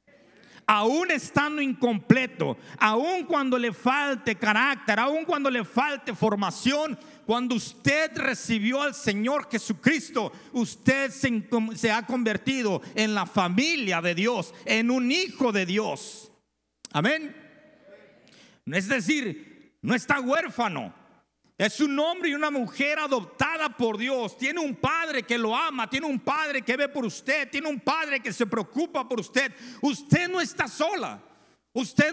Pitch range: 230-295 Hz